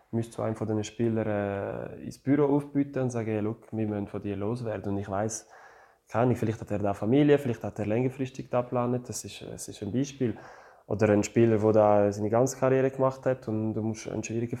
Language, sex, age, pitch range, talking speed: German, male, 20-39, 110-135 Hz, 205 wpm